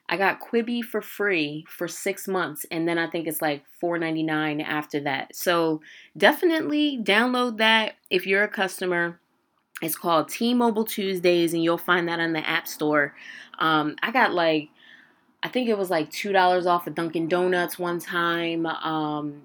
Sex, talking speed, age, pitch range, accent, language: female, 170 wpm, 20-39, 150-180 Hz, American, English